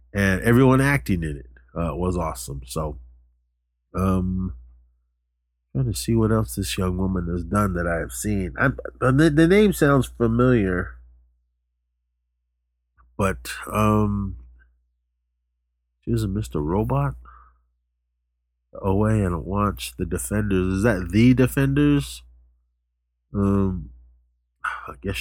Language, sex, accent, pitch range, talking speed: English, male, American, 70-120 Hz, 115 wpm